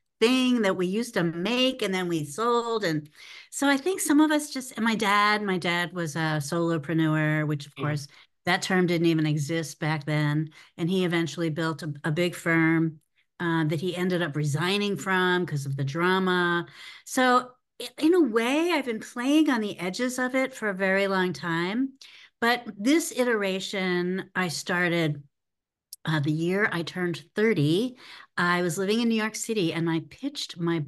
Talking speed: 185 wpm